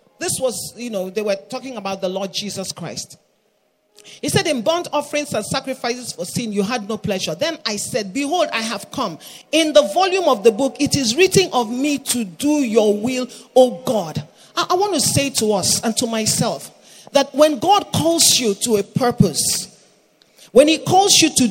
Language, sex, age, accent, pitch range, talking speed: English, male, 40-59, Nigerian, 200-285 Hz, 200 wpm